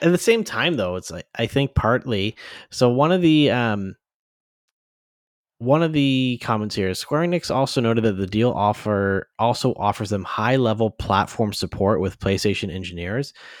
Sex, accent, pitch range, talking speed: male, American, 95-120 Hz, 170 wpm